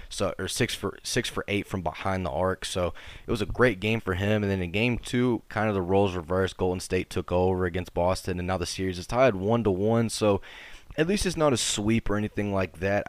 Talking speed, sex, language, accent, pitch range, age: 240 wpm, male, English, American, 90-110 Hz, 20-39